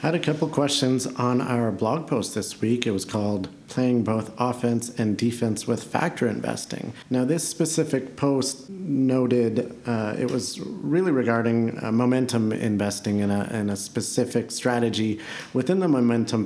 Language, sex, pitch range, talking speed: English, male, 110-125 Hz, 160 wpm